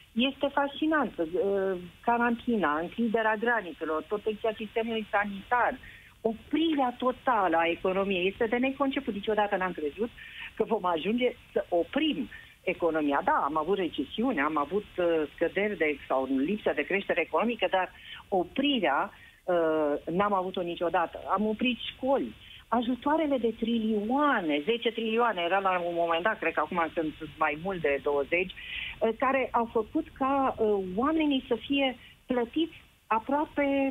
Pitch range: 185-245 Hz